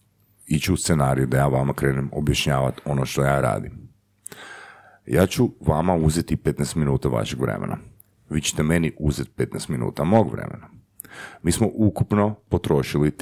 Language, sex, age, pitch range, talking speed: Croatian, male, 40-59, 70-105 Hz, 145 wpm